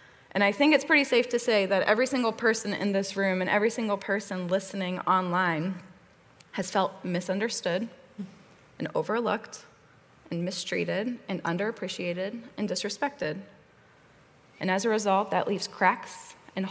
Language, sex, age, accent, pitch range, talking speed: English, female, 20-39, American, 185-220 Hz, 145 wpm